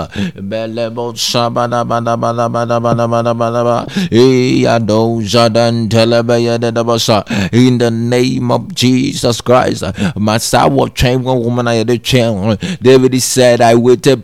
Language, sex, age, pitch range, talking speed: English, male, 30-49, 115-130 Hz, 60 wpm